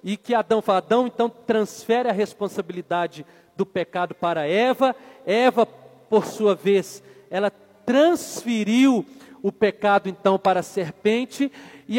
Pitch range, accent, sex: 180-235 Hz, Brazilian, male